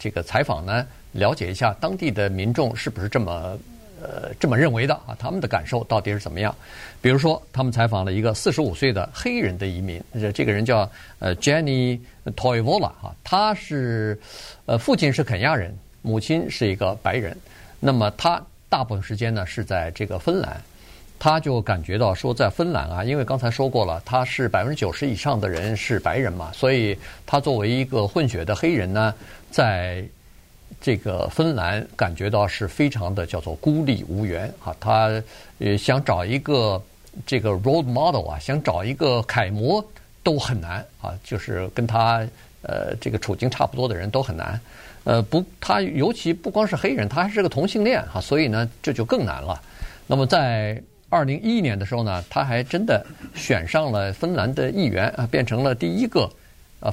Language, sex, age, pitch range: Chinese, male, 50-69, 100-135 Hz